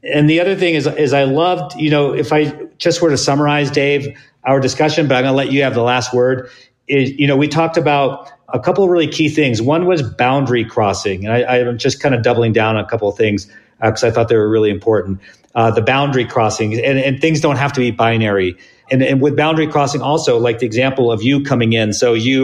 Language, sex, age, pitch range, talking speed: English, male, 40-59, 115-140 Hz, 250 wpm